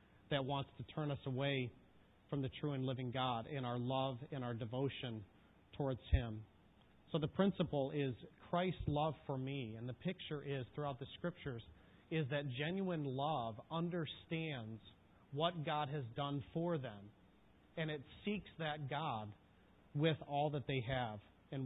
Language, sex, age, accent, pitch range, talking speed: English, male, 40-59, American, 120-155 Hz, 160 wpm